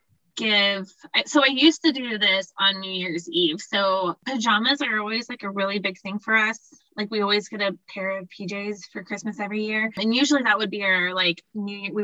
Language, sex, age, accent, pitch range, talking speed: English, female, 20-39, American, 190-230 Hz, 215 wpm